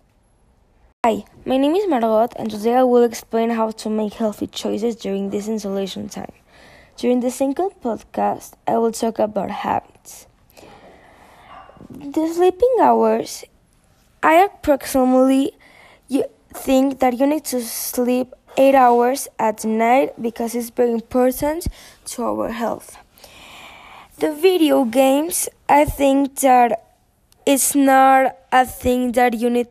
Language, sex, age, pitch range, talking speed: Hebrew, female, 20-39, 230-275 Hz, 130 wpm